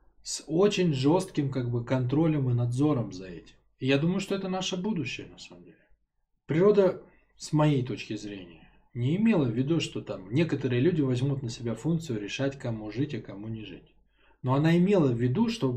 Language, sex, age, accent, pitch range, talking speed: Russian, male, 20-39, native, 115-155 Hz, 190 wpm